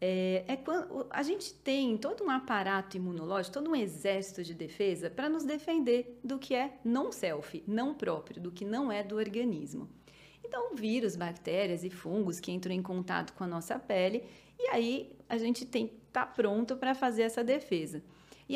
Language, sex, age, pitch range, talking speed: Portuguese, female, 40-59, 195-265 Hz, 180 wpm